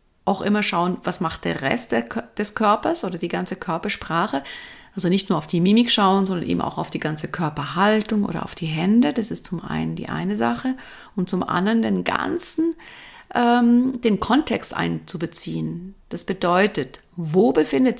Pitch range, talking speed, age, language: 170-215 Hz, 170 wpm, 50-69, German